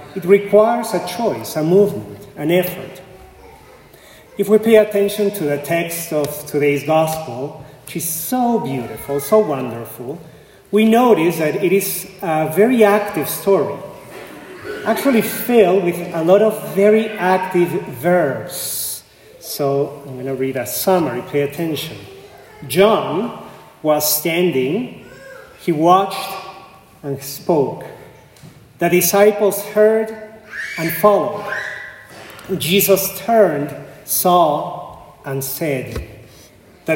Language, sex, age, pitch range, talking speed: English, male, 40-59, 150-200 Hz, 110 wpm